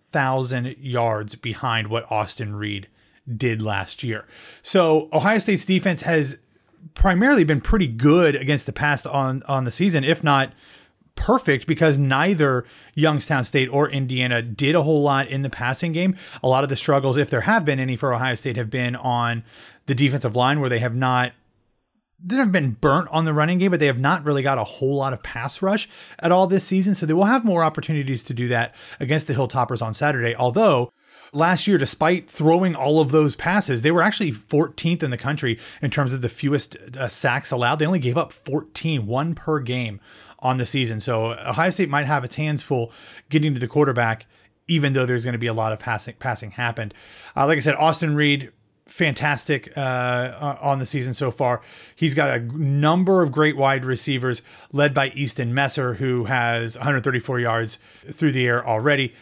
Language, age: English, 30-49